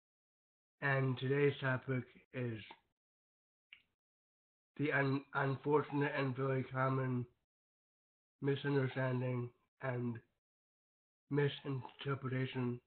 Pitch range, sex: 120-140 Hz, male